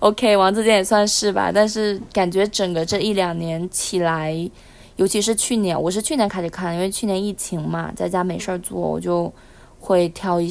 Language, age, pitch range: Chinese, 20-39, 175-215 Hz